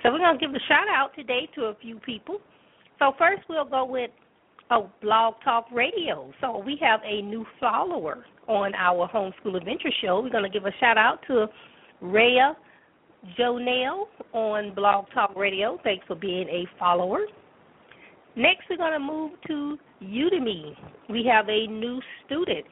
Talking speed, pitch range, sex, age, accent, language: 160 wpm, 215-285 Hz, female, 40-59, American, English